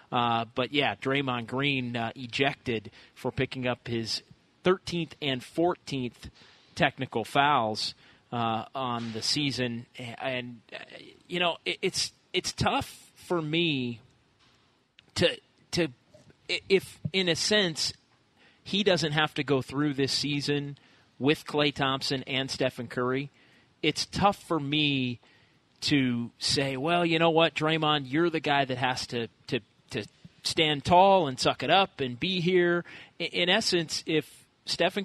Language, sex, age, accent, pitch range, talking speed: English, male, 30-49, American, 125-160 Hz, 140 wpm